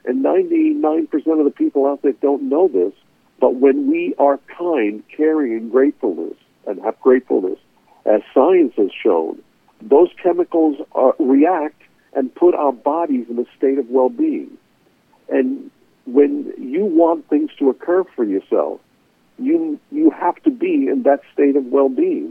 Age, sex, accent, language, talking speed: 60-79, male, American, English, 155 wpm